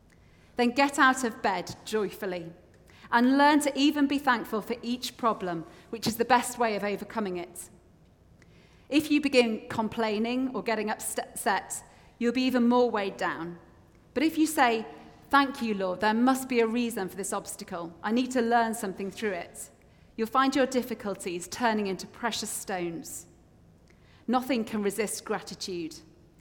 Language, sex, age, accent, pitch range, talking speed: English, female, 30-49, British, 190-240 Hz, 160 wpm